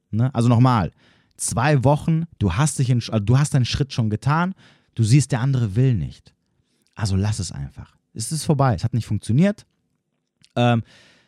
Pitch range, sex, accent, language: 95-130 Hz, male, German, German